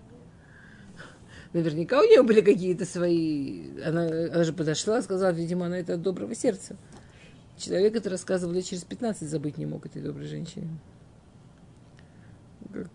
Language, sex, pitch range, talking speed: Russian, female, 160-185 Hz, 145 wpm